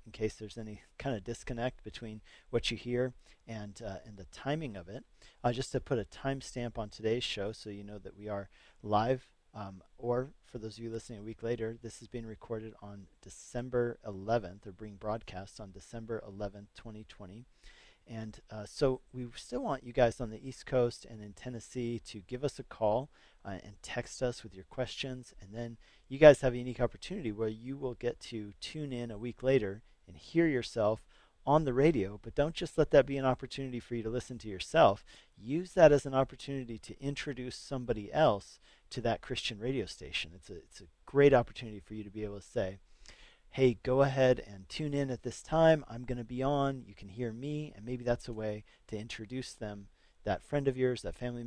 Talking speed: 210 wpm